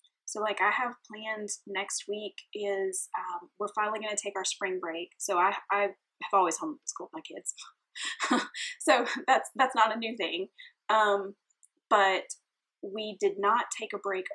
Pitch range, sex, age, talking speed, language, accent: 190-310 Hz, female, 10-29, 165 wpm, English, American